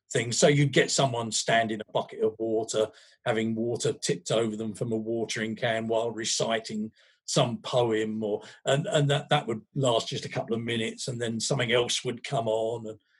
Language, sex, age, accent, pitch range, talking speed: English, male, 50-69, British, 115-145 Hz, 200 wpm